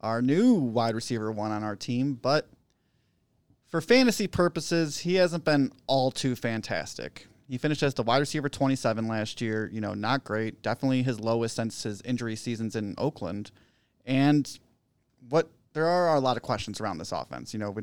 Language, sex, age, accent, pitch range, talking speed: English, male, 30-49, American, 115-140 Hz, 180 wpm